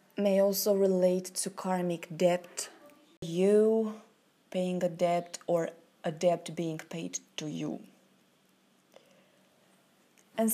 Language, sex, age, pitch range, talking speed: English, female, 20-39, 180-220 Hz, 100 wpm